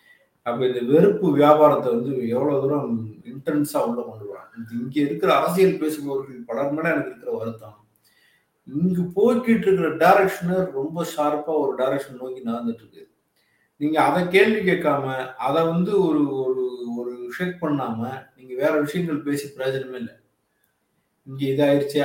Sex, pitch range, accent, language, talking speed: male, 135-180 Hz, native, Tamil, 135 wpm